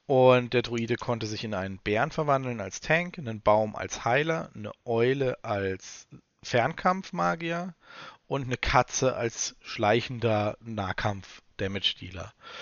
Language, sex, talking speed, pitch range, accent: German, male, 125 wpm, 110-150 Hz, German